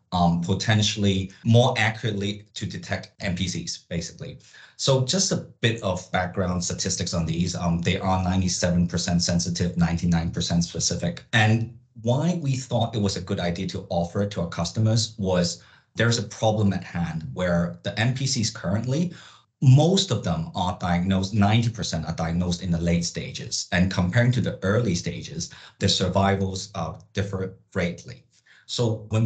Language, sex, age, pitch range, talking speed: English, male, 30-49, 90-110 Hz, 150 wpm